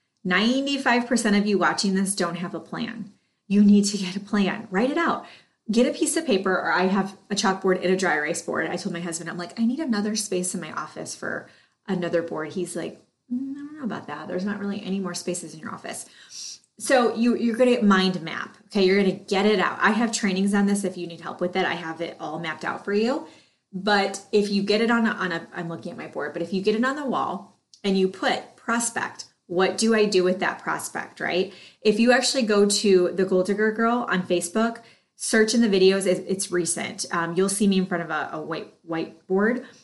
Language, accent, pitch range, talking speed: English, American, 180-220 Hz, 240 wpm